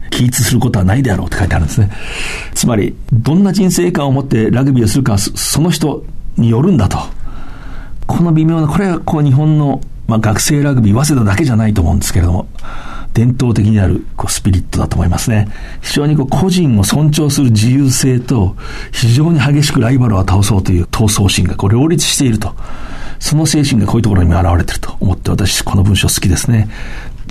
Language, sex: Japanese, male